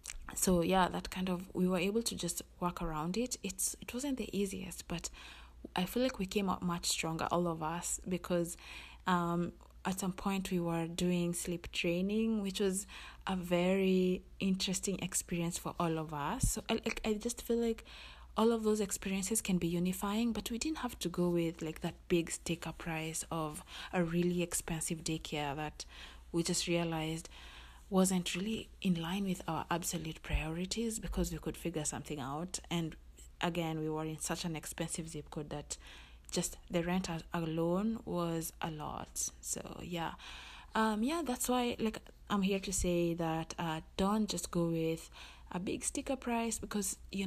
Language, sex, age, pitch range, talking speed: English, female, 20-39, 160-195 Hz, 175 wpm